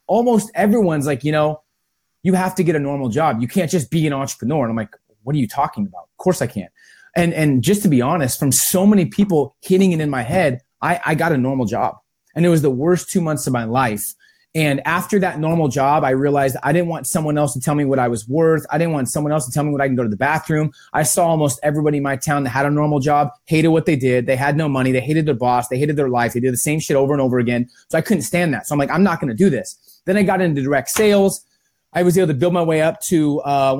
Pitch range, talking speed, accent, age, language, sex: 140-185 Hz, 290 wpm, American, 30-49, English, male